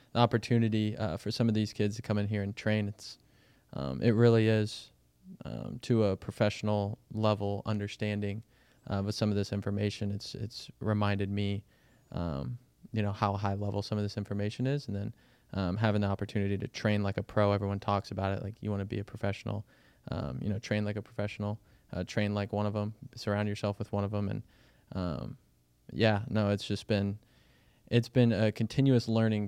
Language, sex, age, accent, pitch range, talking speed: English, male, 20-39, American, 100-110 Hz, 200 wpm